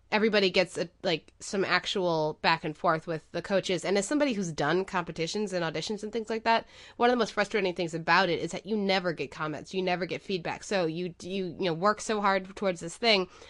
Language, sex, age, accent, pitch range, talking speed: English, female, 20-39, American, 170-210 Hz, 235 wpm